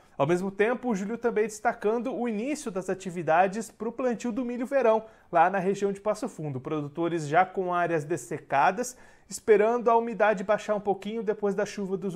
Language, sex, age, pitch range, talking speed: Portuguese, male, 30-49, 170-210 Hz, 190 wpm